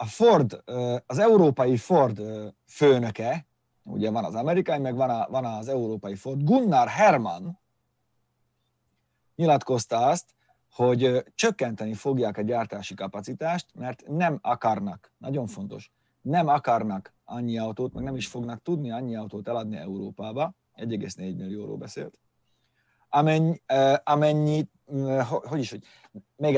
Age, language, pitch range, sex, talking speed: 30-49, Hungarian, 110-150 Hz, male, 115 wpm